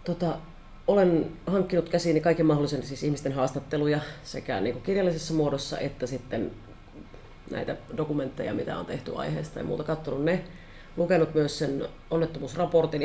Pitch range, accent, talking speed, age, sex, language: 140-170 Hz, native, 135 wpm, 30-49, female, Finnish